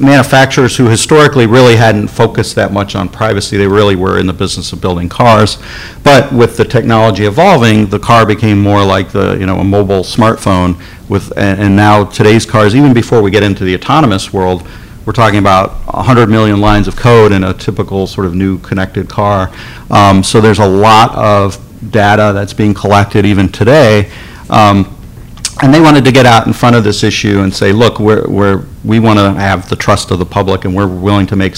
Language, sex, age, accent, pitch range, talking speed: English, male, 50-69, American, 95-110 Hz, 200 wpm